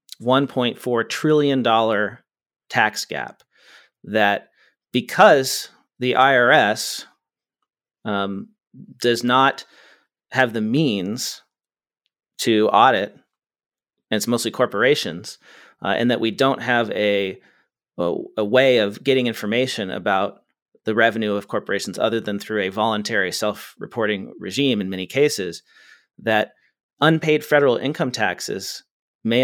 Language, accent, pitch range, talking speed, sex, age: English, American, 110-130 Hz, 110 wpm, male, 40-59